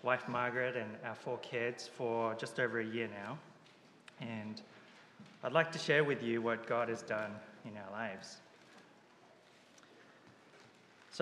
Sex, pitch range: male, 115-135 Hz